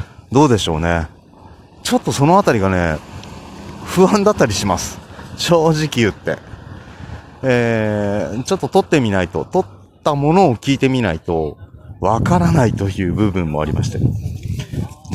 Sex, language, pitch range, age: male, Japanese, 95-145 Hz, 30-49